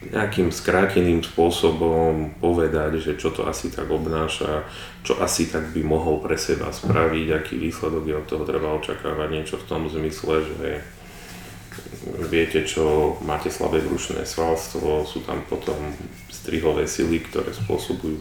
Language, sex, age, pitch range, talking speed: Slovak, male, 30-49, 75-85 Hz, 140 wpm